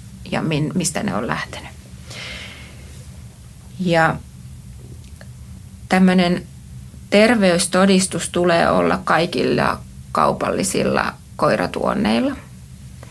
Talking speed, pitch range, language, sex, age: 55 wpm, 155-195 Hz, Finnish, female, 30-49